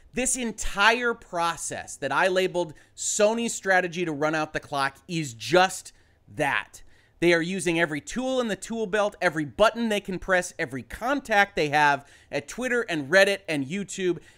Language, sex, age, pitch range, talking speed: English, male, 30-49, 155-215 Hz, 165 wpm